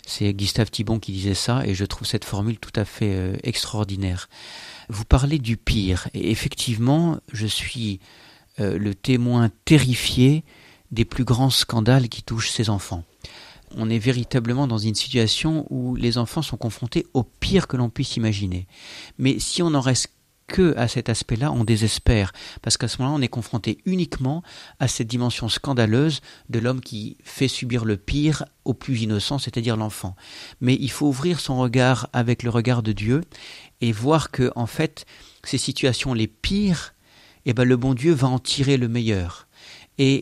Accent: French